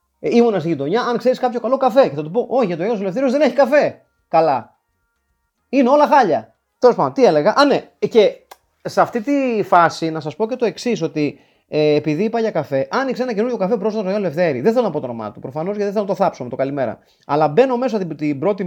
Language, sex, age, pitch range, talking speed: Greek, male, 30-49, 160-230 Hz, 255 wpm